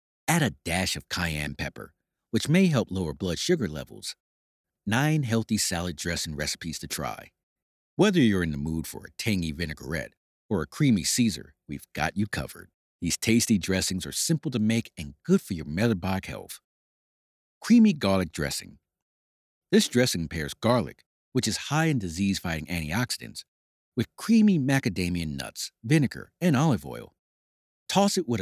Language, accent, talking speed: English, American, 155 wpm